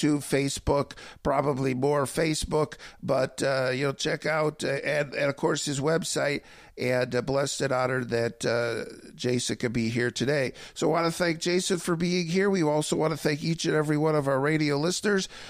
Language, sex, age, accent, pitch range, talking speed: English, male, 50-69, American, 135-160 Hz, 195 wpm